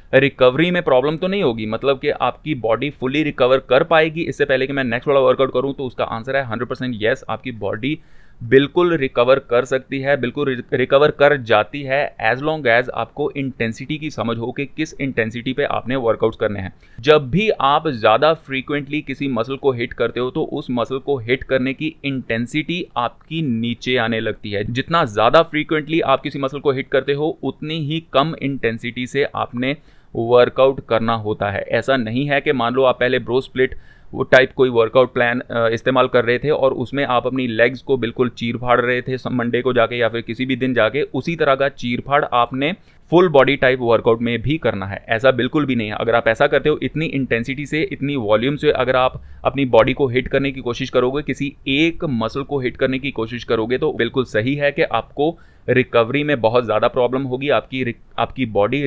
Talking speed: 205 wpm